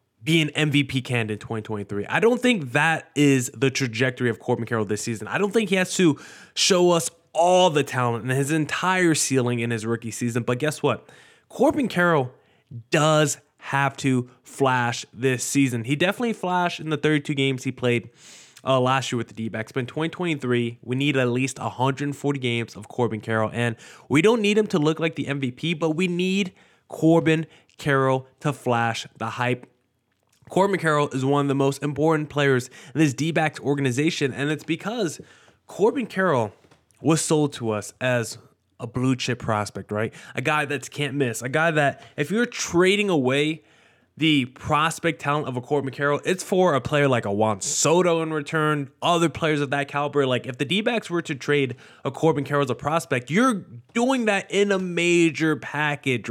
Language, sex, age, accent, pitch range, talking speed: English, male, 20-39, American, 125-165 Hz, 190 wpm